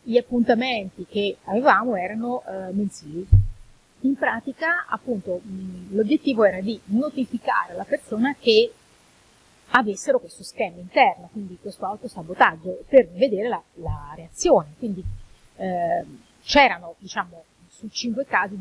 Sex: female